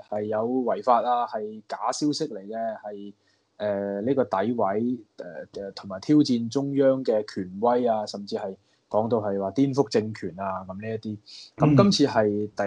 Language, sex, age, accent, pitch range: Chinese, male, 20-39, native, 105-135 Hz